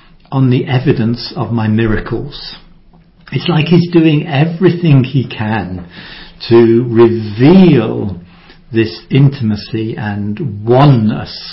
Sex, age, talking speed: male, 60-79, 100 wpm